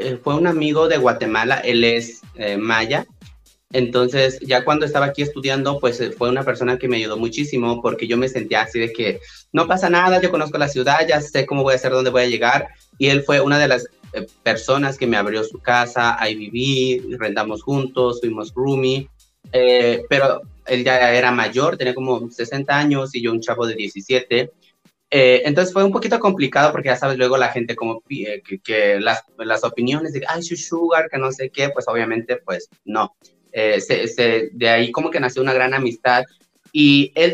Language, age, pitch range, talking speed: Spanish, 30-49, 120-145 Hz, 205 wpm